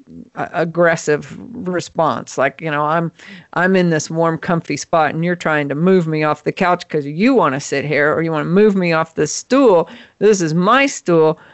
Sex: female